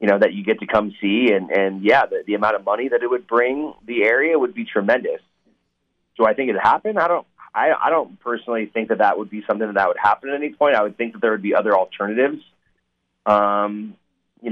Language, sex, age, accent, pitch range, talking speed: English, male, 30-49, American, 100-140 Hz, 250 wpm